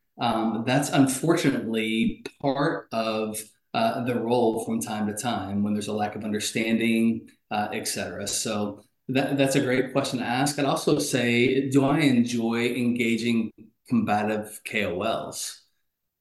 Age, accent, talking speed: 20-39, American, 135 wpm